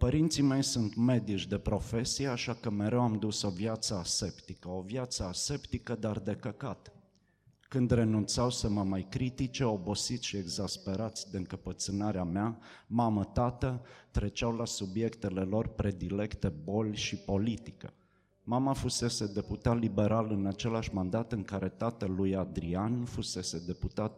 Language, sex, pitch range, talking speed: Romanian, male, 100-120 Hz, 135 wpm